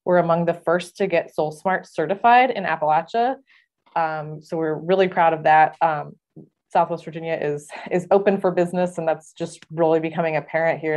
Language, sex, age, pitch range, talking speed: English, female, 20-39, 155-185 Hz, 175 wpm